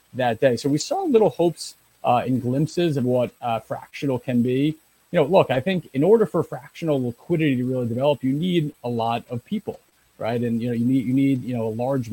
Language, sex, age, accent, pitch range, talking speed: English, male, 40-59, American, 120-140 Hz, 235 wpm